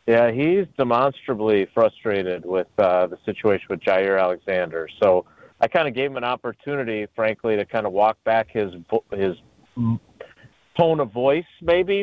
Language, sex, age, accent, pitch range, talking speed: English, male, 40-59, American, 110-135 Hz, 155 wpm